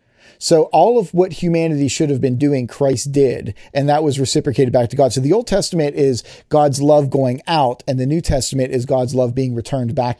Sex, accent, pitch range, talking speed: male, American, 130-155 Hz, 220 wpm